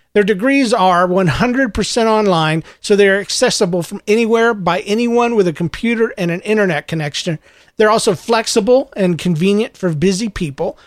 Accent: American